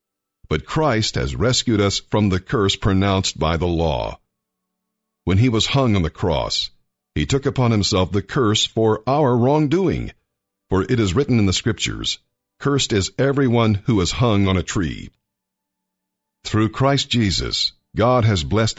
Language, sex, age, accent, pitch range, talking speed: English, male, 50-69, American, 95-125 Hz, 160 wpm